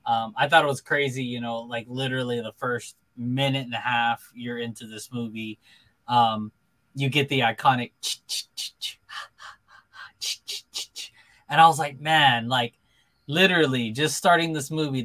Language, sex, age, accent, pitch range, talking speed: English, male, 20-39, American, 115-140 Hz, 145 wpm